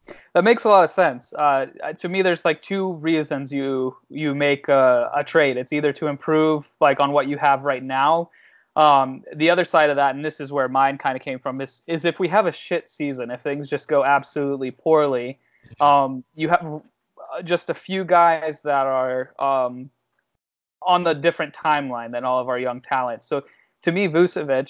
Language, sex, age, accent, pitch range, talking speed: English, male, 20-39, American, 135-155 Hz, 200 wpm